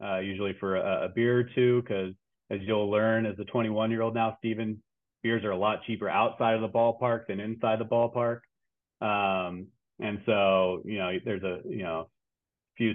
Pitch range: 95-110 Hz